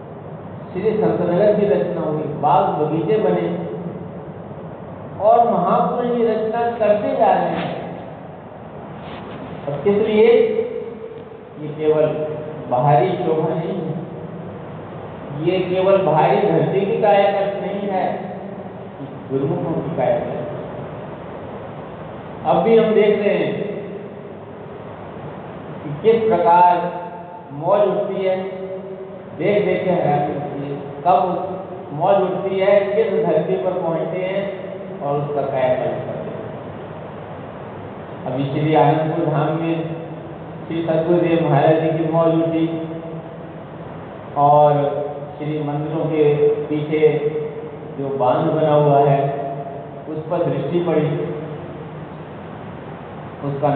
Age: 50-69